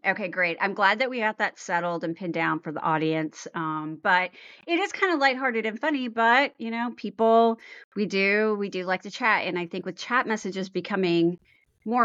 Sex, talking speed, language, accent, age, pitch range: female, 215 wpm, English, American, 30-49, 170-215 Hz